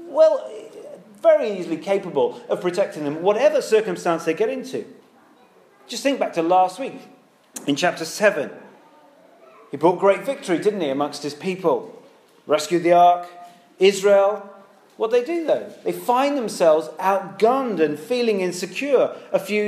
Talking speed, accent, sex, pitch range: 145 wpm, British, male, 160-220 Hz